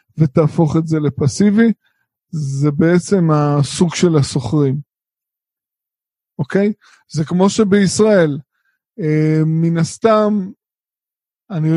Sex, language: male, Hebrew